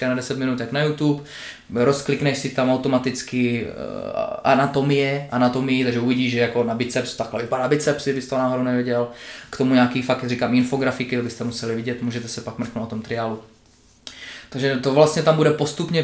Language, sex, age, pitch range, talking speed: Czech, male, 20-39, 120-135 Hz, 175 wpm